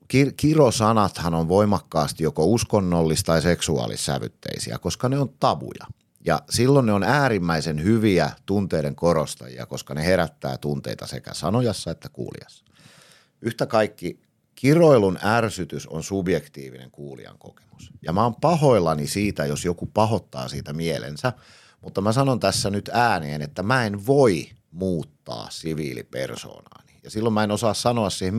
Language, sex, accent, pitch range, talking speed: Finnish, male, native, 80-115 Hz, 135 wpm